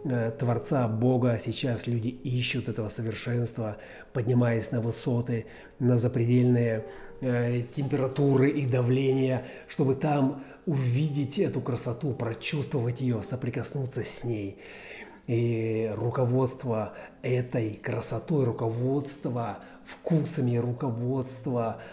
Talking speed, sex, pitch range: 90 wpm, male, 115-135 Hz